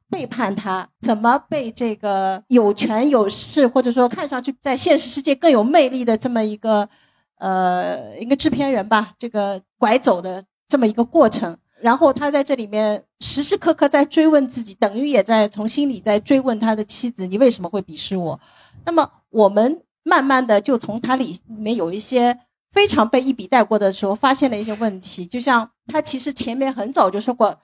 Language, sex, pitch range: Chinese, female, 215-275 Hz